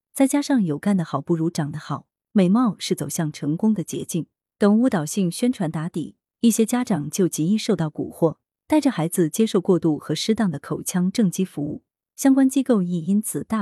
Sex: female